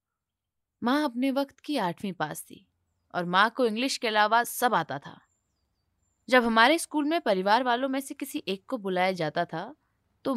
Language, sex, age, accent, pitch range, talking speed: Hindi, female, 20-39, native, 175-265 Hz, 180 wpm